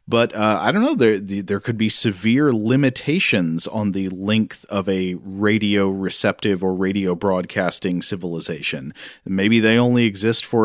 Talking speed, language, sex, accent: 150 wpm, English, male, American